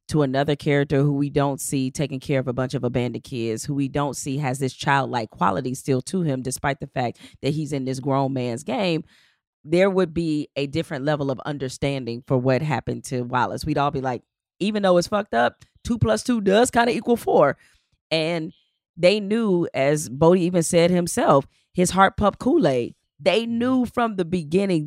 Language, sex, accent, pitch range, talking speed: English, female, American, 140-185 Hz, 200 wpm